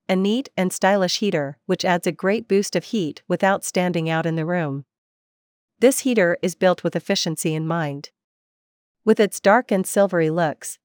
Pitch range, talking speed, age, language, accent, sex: 160-200 Hz, 175 wpm, 40-59, English, American, female